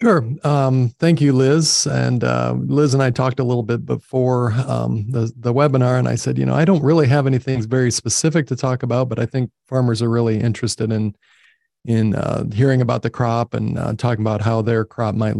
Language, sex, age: English, male, 40-59